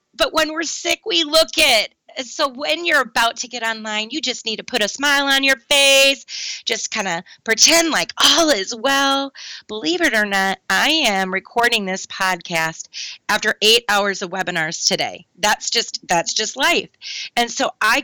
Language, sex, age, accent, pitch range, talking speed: English, female, 30-49, American, 195-260 Hz, 185 wpm